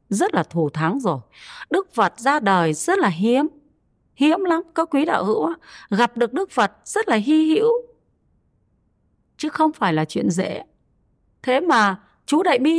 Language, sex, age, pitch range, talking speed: Vietnamese, female, 30-49, 215-310 Hz, 175 wpm